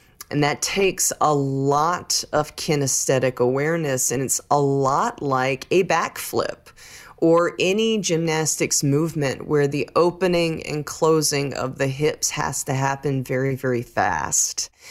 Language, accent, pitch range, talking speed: English, American, 140-165 Hz, 135 wpm